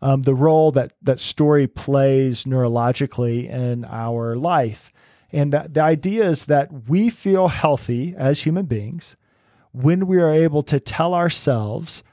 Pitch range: 125-155 Hz